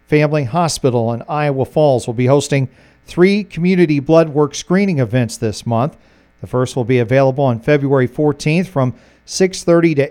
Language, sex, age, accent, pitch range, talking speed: English, male, 40-59, American, 135-170 Hz, 160 wpm